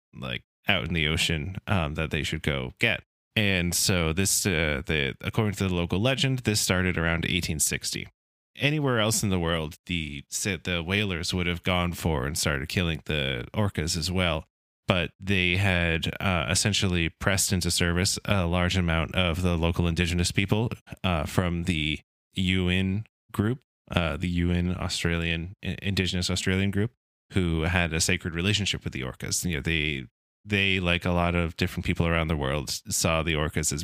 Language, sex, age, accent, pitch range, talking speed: English, male, 20-39, American, 80-95 Hz, 170 wpm